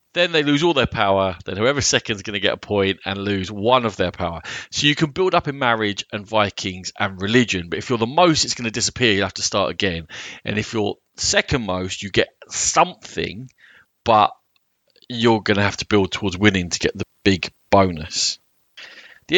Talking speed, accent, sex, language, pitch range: 215 wpm, British, male, English, 95-120 Hz